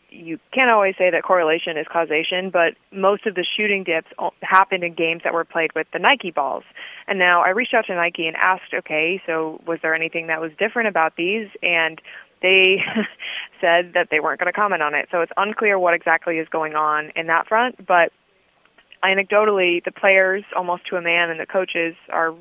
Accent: American